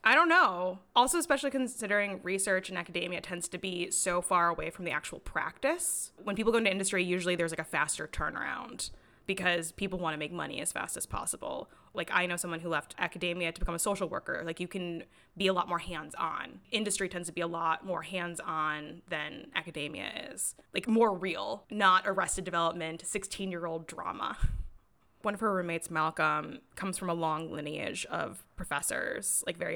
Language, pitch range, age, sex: English, 170-195 Hz, 20-39, female